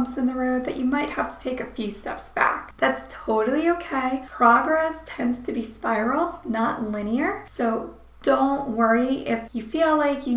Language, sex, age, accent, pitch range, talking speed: English, female, 10-29, American, 235-295 Hz, 180 wpm